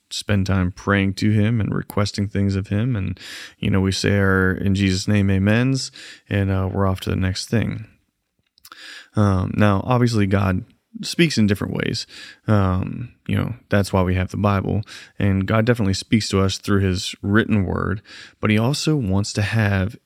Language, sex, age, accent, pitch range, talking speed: English, male, 20-39, American, 95-115 Hz, 180 wpm